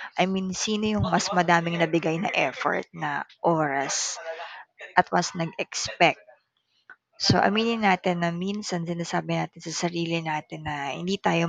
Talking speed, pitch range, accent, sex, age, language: 140 wpm, 160-205 Hz, native, female, 20-39, Filipino